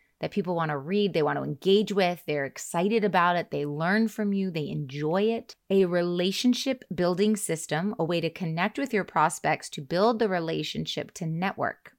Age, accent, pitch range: 30-49, American, 165-220 Hz